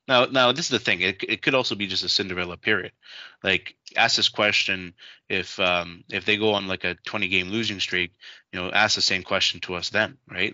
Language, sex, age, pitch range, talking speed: English, male, 20-39, 90-105 Hz, 230 wpm